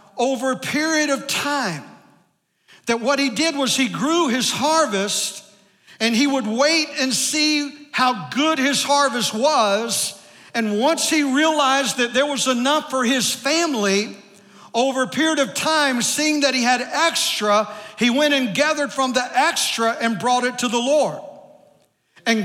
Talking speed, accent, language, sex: 160 wpm, American, English, male